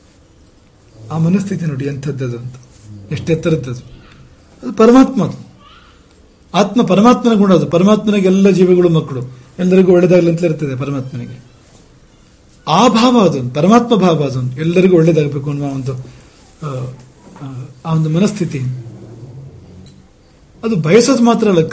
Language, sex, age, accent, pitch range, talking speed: English, male, 40-59, Indian, 125-200 Hz, 45 wpm